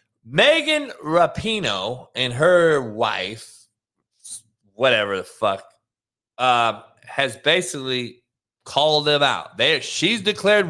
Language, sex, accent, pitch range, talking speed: English, male, American, 185-295 Hz, 95 wpm